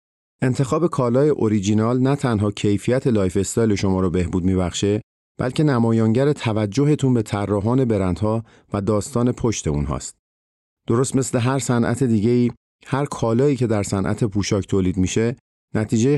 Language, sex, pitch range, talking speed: Persian, male, 100-125 Hz, 135 wpm